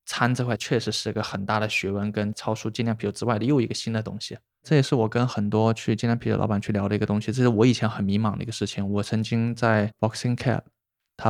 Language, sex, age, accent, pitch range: Chinese, male, 20-39, native, 105-120 Hz